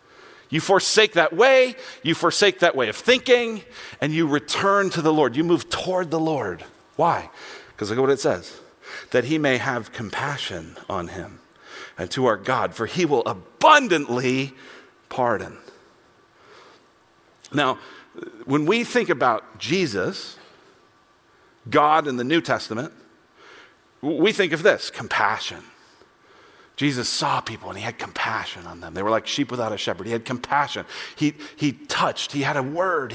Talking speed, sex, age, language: 155 wpm, male, 40-59, English